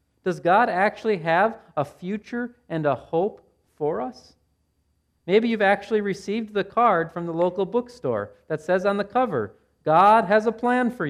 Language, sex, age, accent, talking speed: English, male, 40-59, American, 170 wpm